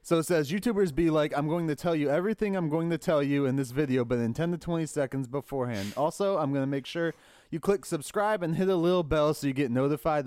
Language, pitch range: English, 130-175 Hz